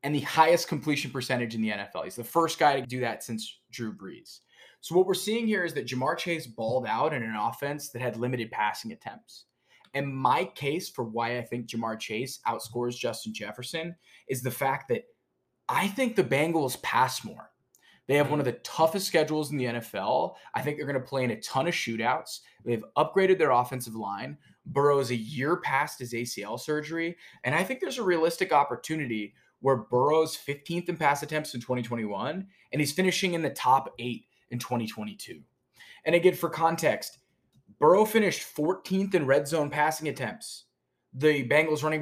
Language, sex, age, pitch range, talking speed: English, male, 20-39, 120-165 Hz, 190 wpm